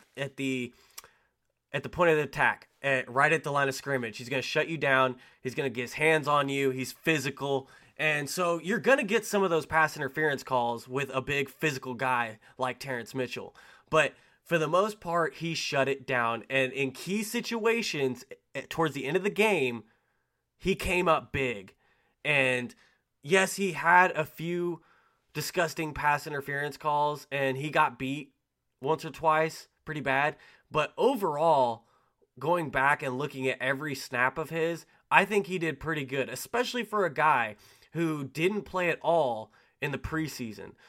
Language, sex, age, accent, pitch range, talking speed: English, male, 20-39, American, 130-165 Hz, 180 wpm